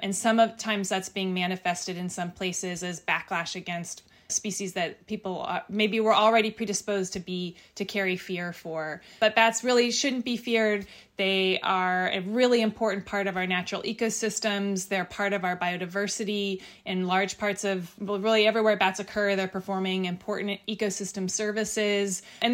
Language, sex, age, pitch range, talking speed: English, female, 20-39, 190-225 Hz, 155 wpm